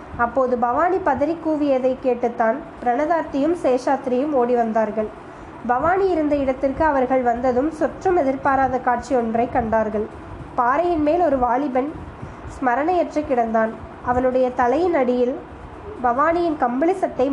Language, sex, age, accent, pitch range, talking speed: Tamil, female, 20-39, native, 245-300 Hz, 105 wpm